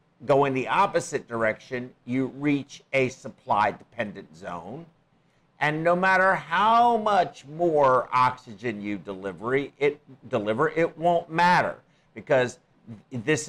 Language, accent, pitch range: English, American, 110-155 Hz